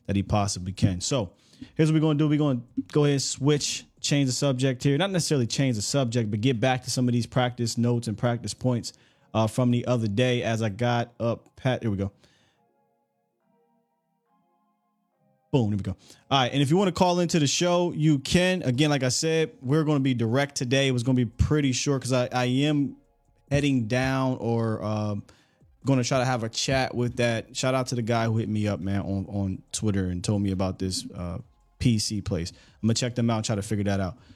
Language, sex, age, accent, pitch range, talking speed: English, male, 20-39, American, 110-140 Hz, 235 wpm